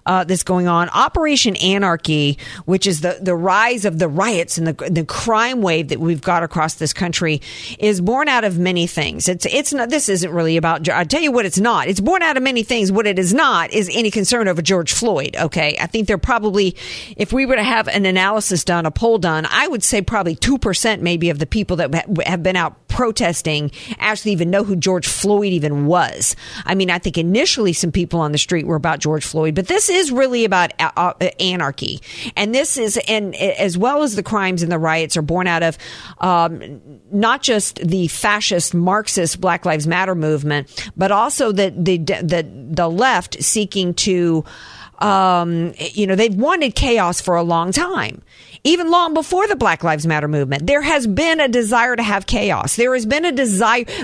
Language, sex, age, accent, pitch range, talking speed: English, female, 50-69, American, 170-225 Hz, 205 wpm